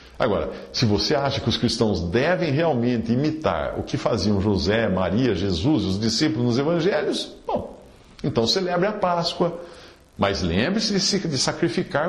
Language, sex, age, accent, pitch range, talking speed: Portuguese, male, 50-69, Brazilian, 115-185 Hz, 150 wpm